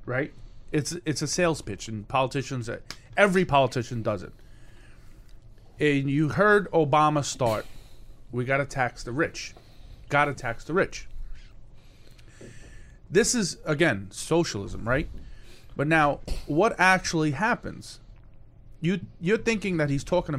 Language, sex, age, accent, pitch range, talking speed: English, male, 30-49, American, 115-155 Hz, 130 wpm